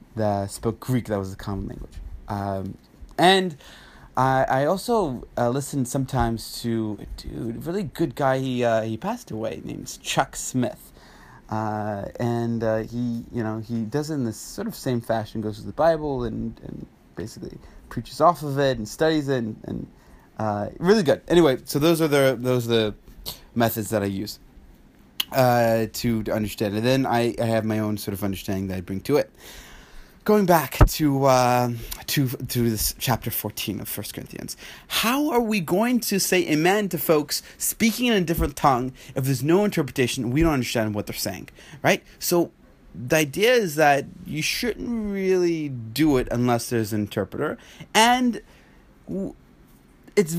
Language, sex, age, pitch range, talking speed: English, male, 20-39, 110-165 Hz, 180 wpm